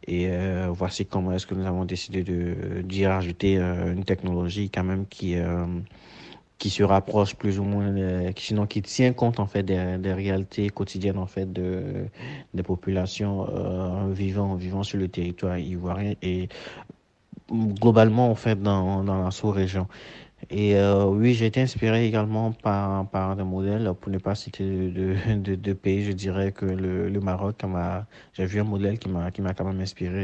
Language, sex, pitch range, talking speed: French, male, 90-100 Hz, 190 wpm